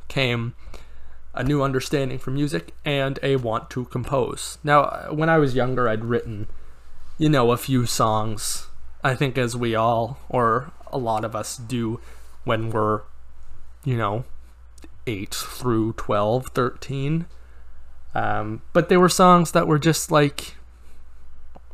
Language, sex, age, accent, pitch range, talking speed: English, male, 20-39, American, 100-150 Hz, 140 wpm